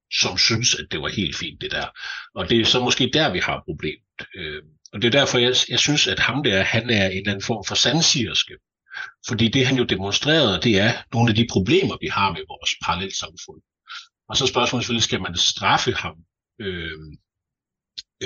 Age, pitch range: 60-79, 95-130 Hz